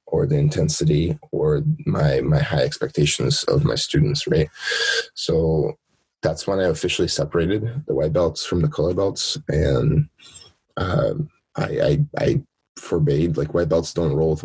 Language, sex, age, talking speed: English, male, 20-39, 155 wpm